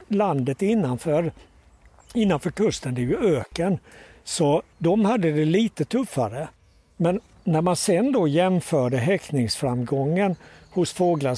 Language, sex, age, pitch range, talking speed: Swedish, male, 60-79, 130-180 Hz, 120 wpm